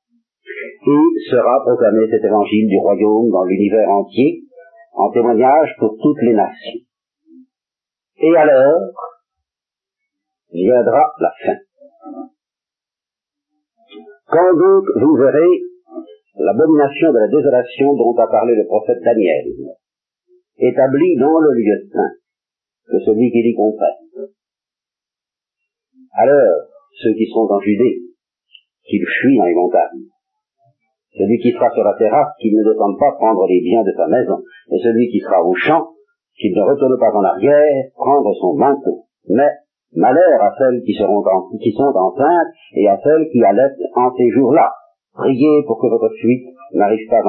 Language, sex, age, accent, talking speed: French, male, 50-69, French, 145 wpm